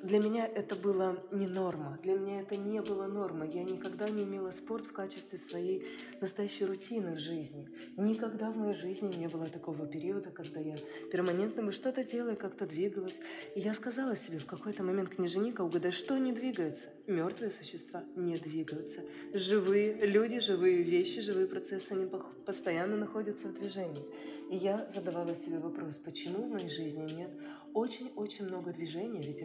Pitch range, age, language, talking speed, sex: 170-215 Hz, 20-39, Russian, 165 wpm, female